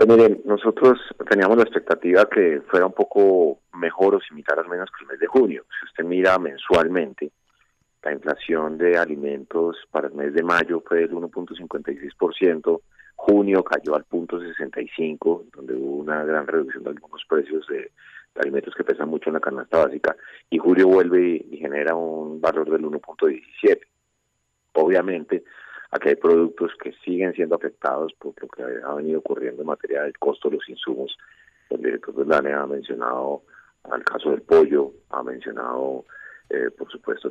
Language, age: Spanish, 30-49